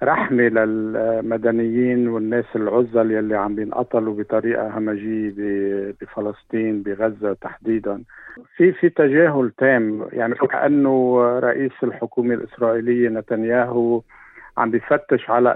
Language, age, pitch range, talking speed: Arabic, 50-69, 115-130 Hz, 95 wpm